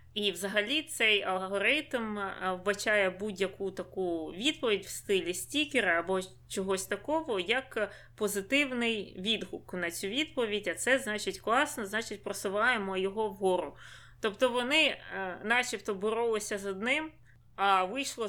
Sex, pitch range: female, 190-235 Hz